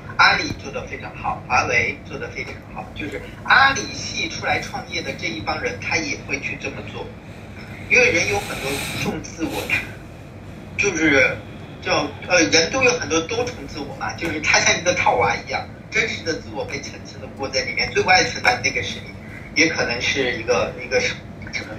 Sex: male